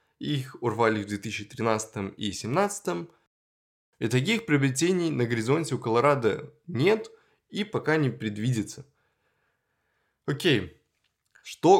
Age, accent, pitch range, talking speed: 20-39, native, 110-155 Hz, 100 wpm